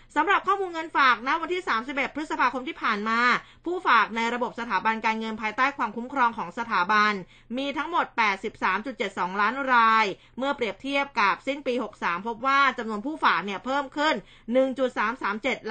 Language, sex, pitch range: Thai, female, 215-275 Hz